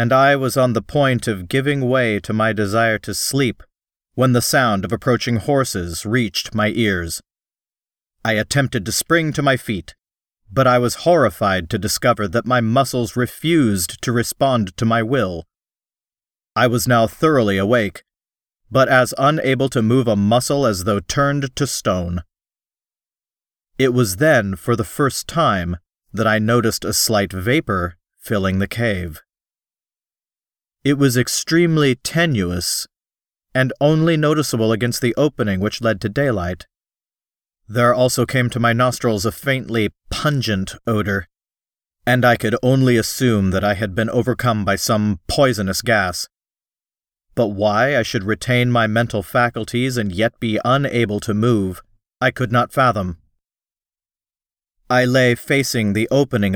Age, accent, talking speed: 40-59, American, 145 wpm